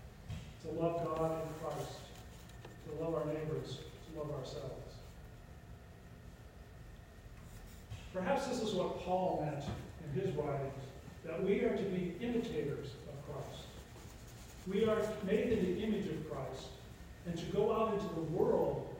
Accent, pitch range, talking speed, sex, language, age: American, 140-195 Hz, 140 wpm, male, English, 40-59